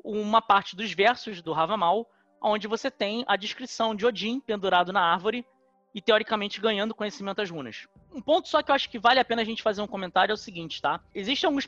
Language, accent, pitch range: Portuguese, Brazilian, 185-235 Hz